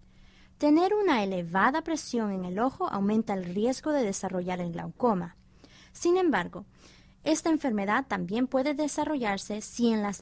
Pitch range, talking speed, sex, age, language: 190-275 Hz, 140 wpm, female, 20-39, English